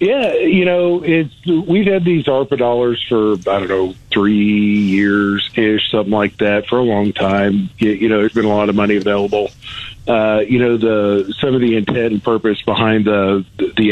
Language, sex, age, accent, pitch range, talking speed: English, male, 50-69, American, 105-135 Hz, 190 wpm